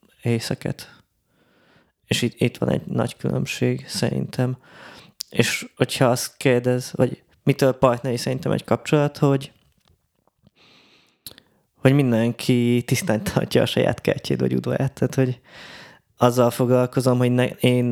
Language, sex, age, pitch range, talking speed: Hungarian, male, 20-39, 115-125 Hz, 120 wpm